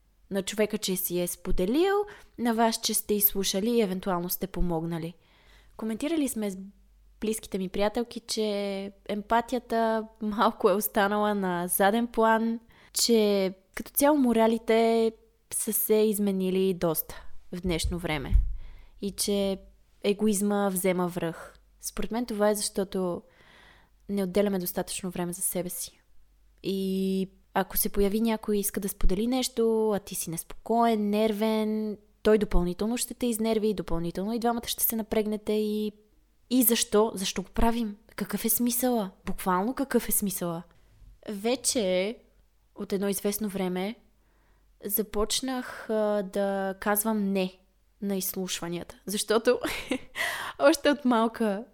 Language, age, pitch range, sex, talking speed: Bulgarian, 20-39, 190-225 Hz, female, 130 wpm